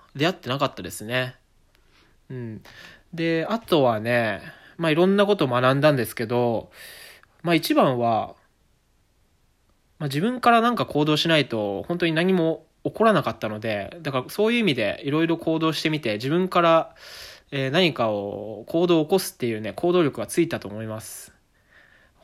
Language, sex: Japanese, male